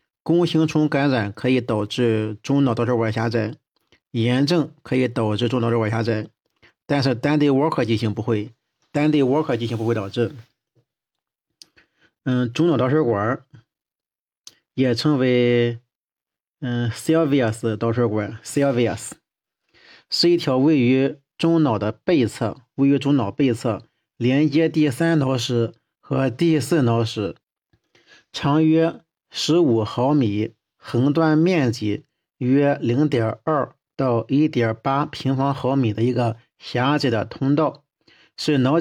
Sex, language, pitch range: male, Chinese, 115-150 Hz